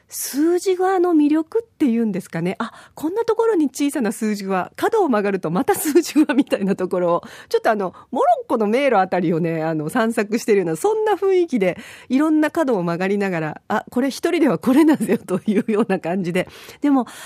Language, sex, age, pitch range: Japanese, female, 40-59, 185-285 Hz